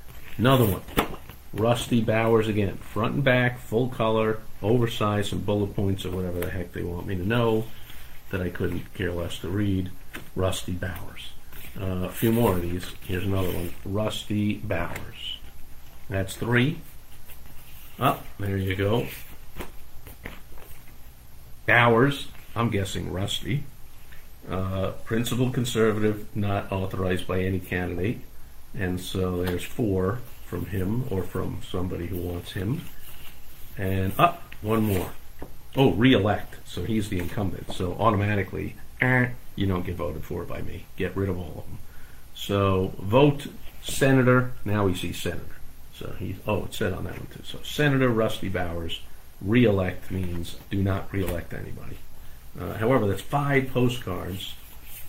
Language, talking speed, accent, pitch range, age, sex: English, 145 wpm, American, 90-115 Hz, 50-69, male